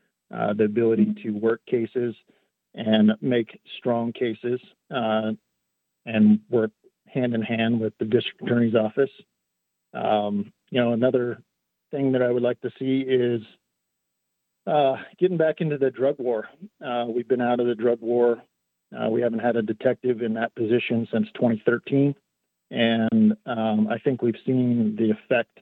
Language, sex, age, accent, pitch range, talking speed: English, male, 50-69, American, 110-125 Hz, 150 wpm